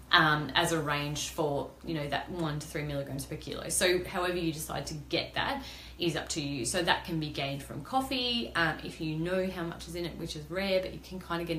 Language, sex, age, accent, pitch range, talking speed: English, female, 30-49, Australian, 145-170 Hz, 260 wpm